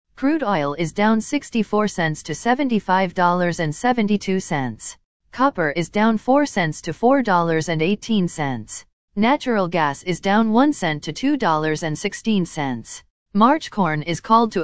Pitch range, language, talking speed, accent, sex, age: 160-225 Hz, English, 115 wpm, American, female, 40-59